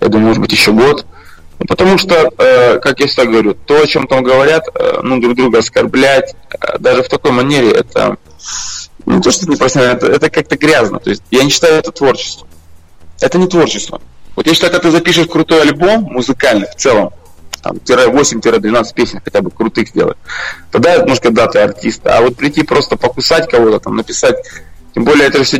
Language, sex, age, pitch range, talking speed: Russian, male, 20-39, 115-160 Hz, 190 wpm